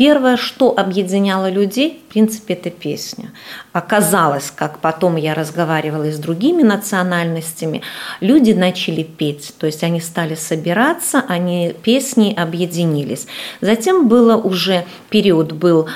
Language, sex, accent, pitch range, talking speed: Russian, female, native, 170-220 Hz, 120 wpm